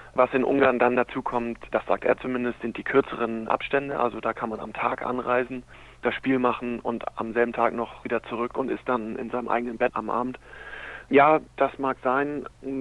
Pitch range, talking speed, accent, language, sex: 125-135 Hz, 205 wpm, German, German, male